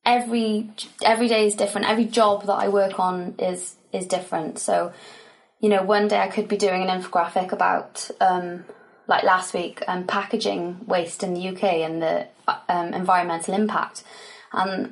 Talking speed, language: 170 wpm, English